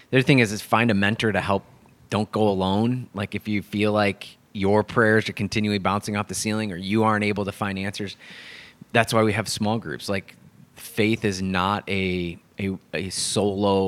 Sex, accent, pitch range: male, American, 100-115 Hz